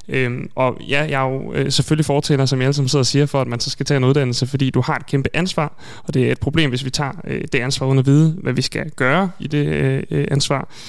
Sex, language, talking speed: male, Danish, 280 wpm